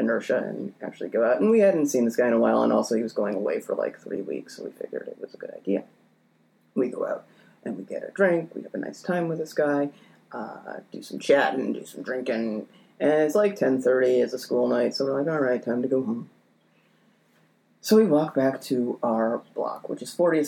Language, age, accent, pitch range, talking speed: English, 30-49, American, 115-155 Hz, 240 wpm